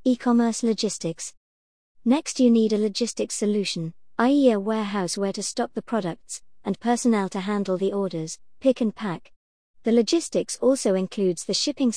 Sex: male